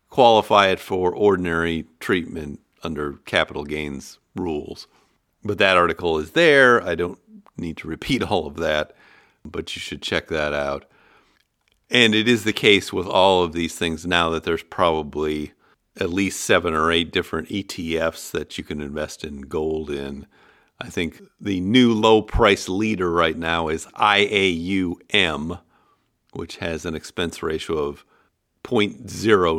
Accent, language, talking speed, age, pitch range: American, English, 150 wpm, 50-69, 80-110 Hz